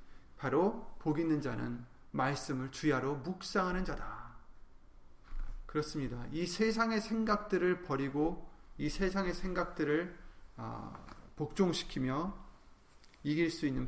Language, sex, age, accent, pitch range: Korean, male, 30-49, native, 120-170 Hz